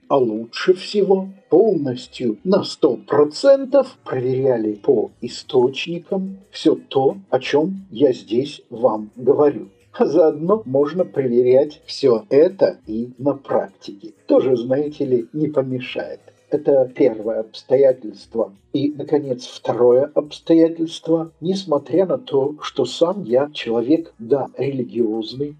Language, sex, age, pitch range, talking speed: English, male, 50-69, 120-165 Hz, 110 wpm